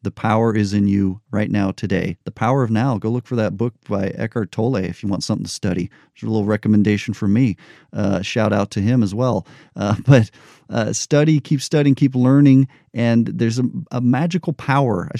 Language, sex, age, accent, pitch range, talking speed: English, male, 40-59, American, 105-130 Hz, 215 wpm